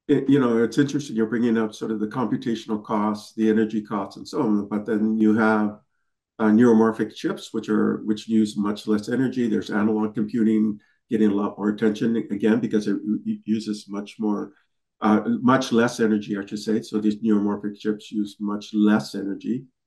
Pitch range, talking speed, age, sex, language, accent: 105-125 Hz, 185 wpm, 50-69, male, English, American